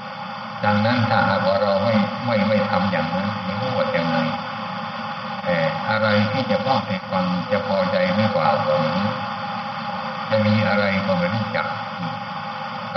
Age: 60-79